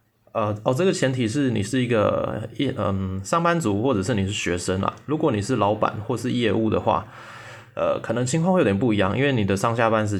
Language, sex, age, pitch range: Chinese, male, 20-39, 100-130 Hz